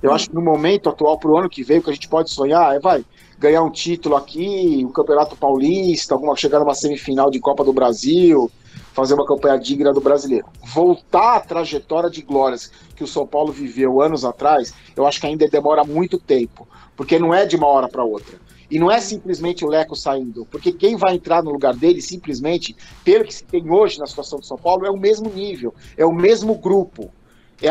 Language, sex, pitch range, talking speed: Portuguese, male, 145-185 Hz, 220 wpm